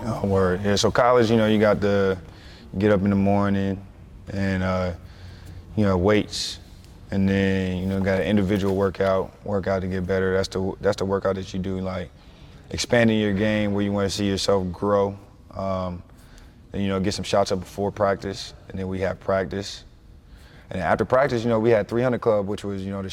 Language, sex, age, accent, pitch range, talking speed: English, male, 20-39, American, 95-105 Hz, 210 wpm